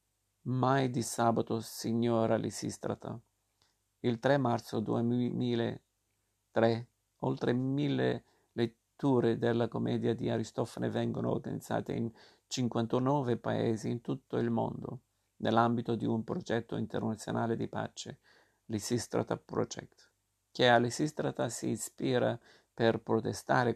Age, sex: 50-69, male